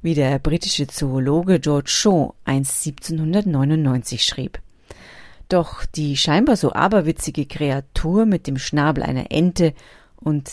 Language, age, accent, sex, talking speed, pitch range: German, 30-49, German, female, 120 wpm, 140-180 Hz